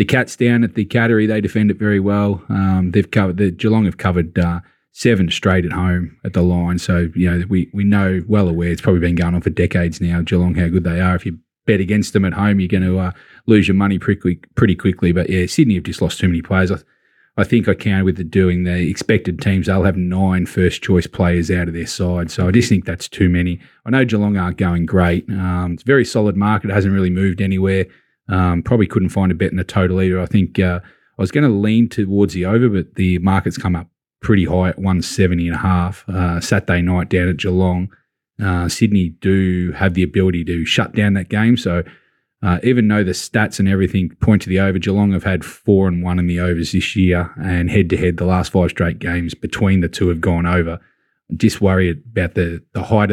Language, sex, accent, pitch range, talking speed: English, male, Australian, 90-100 Hz, 240 wpm